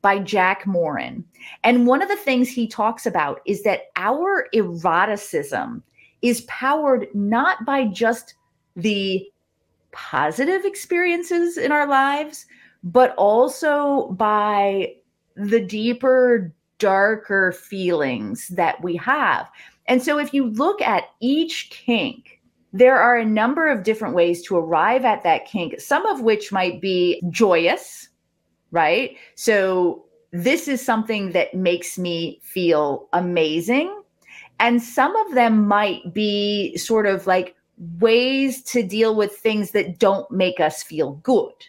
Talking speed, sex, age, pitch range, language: 130 wpm, female, 30-49, 190-260 Hz, English